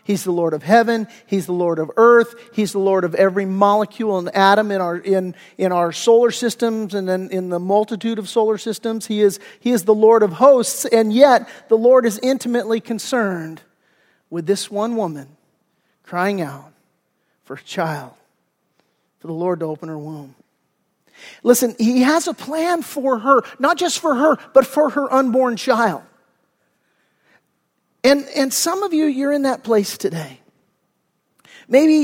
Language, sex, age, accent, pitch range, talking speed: English, male, 40-59, American, 195-245 Hz, 170 wpm